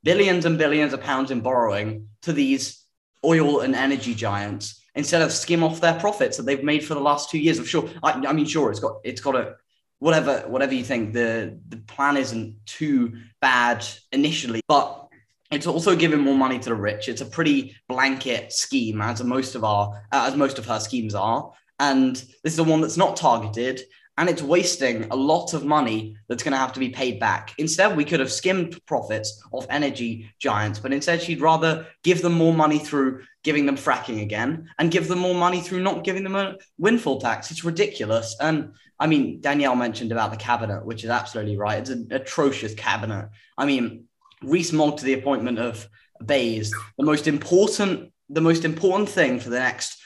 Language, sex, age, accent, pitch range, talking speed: English, male, 10-29, British, 115-160 Hz, 200 wpm